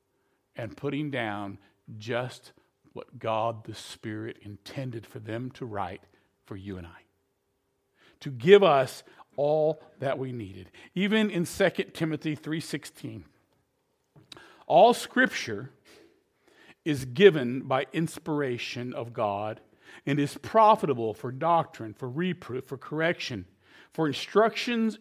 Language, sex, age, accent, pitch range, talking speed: English, male, 50-69, American, 130-200 Hz, 115 wpm